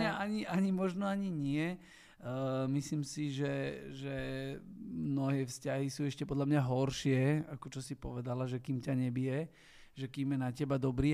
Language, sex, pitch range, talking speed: Slovak, male, 125-160 Hz, 165 wpm